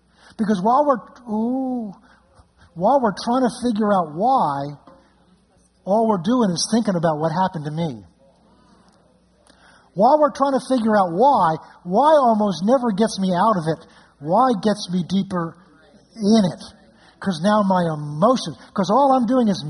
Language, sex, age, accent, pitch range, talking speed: English, male, 50-69, American, 190-260 Hz, 150 wpm